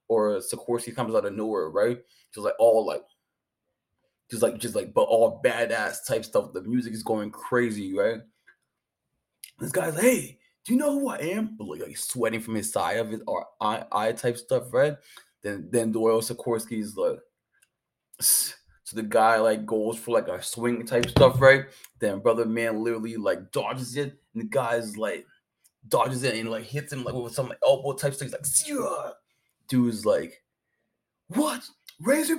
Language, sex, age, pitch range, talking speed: English, male, 20-39, 115-145 Hz, 185 wpm